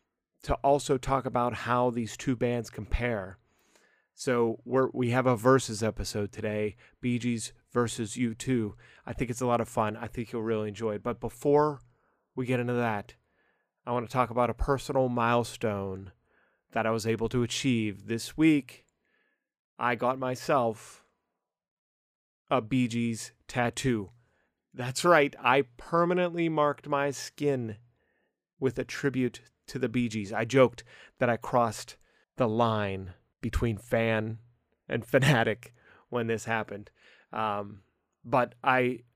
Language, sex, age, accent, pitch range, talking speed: English, male, 30-49, American, 110-130 Hz, 145 wpm